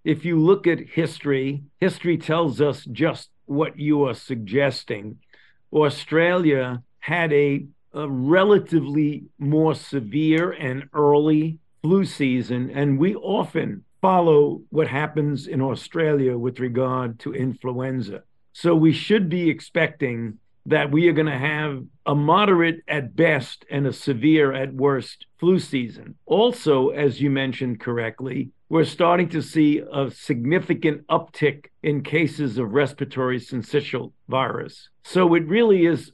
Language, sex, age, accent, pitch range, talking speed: English, male, 50-69, American, 130-160 Hz, 130 wpm